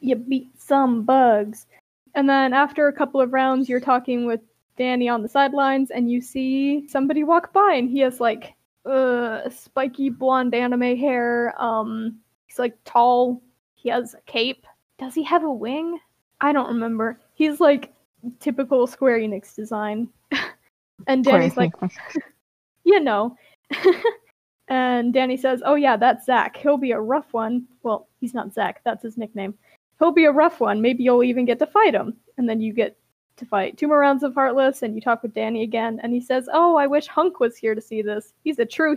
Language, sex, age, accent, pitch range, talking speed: English, female, 20-39, American, 235-290 Hz, 190 wpm